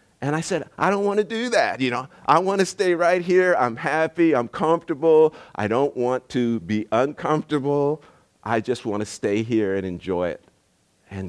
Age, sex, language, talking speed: 50-69, male, English, 195 wpm